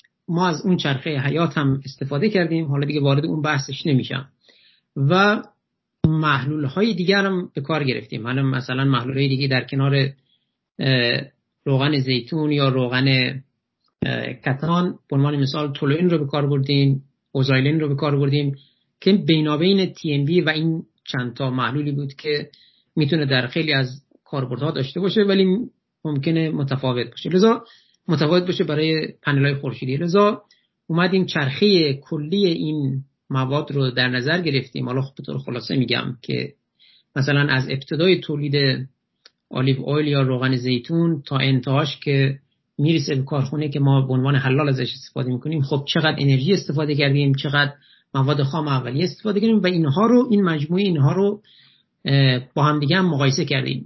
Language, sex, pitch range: Persian, male, 135-165 Hz